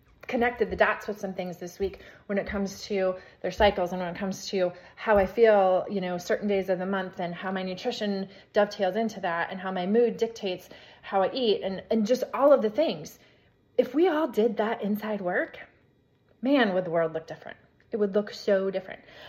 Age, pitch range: 30-49, 185-285 Hz